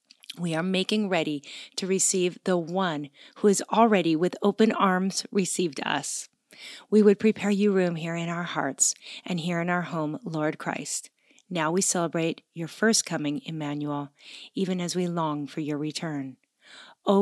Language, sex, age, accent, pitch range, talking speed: English, female, 40-59, American, 165-210 Hz, 165 wpm